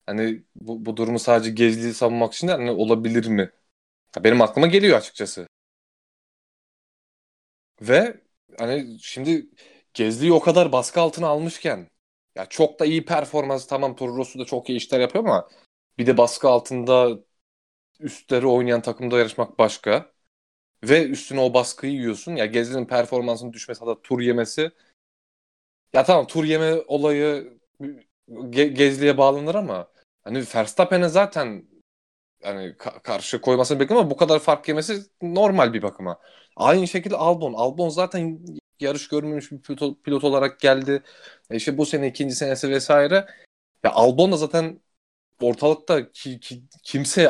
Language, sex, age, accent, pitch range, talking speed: Turkish, male, 20-39, native, 115-155 Hz, 135 wpm